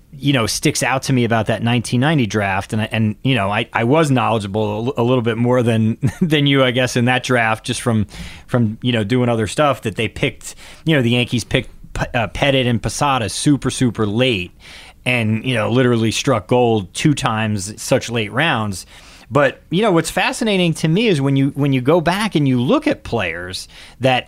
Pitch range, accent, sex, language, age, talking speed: 110-145 Hz, American, male, English, 30-49, 210 wpm